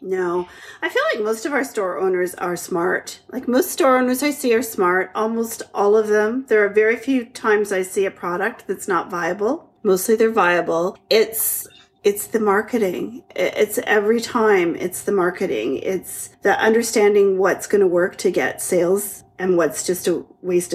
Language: English